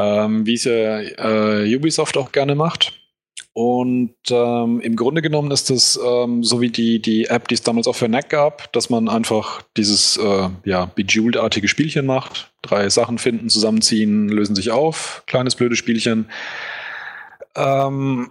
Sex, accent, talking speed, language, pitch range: male, German, 155 wpm, German, 110-130 Hz